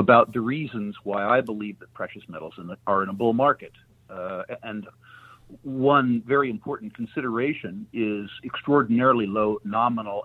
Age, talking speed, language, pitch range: 50-69, 140 wpm, English, 110-135 Hz